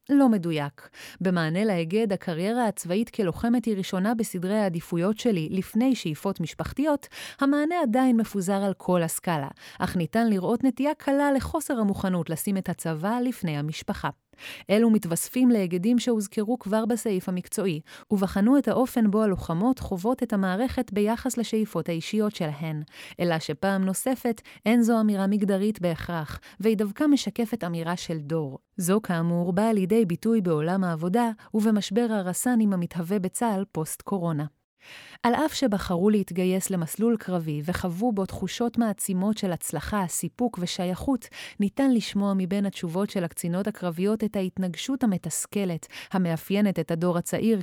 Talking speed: 135 wpm